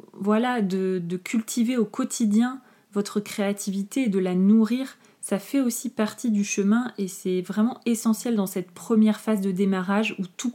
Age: 30-49